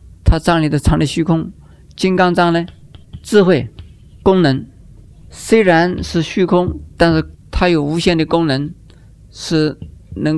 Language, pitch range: Chinese, 90-150 Hz